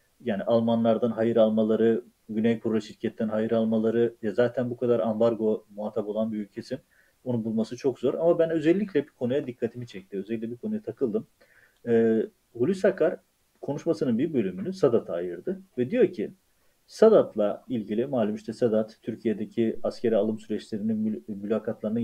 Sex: male